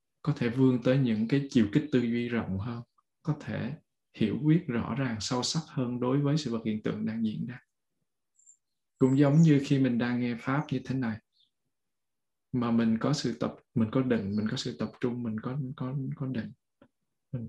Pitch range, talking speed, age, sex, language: 115-140 Hz, 205 wpm, 20-39, male, Vietnamese